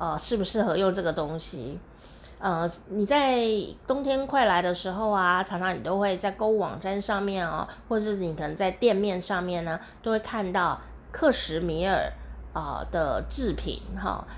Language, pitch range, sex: Chinese, 185-235 Hz, female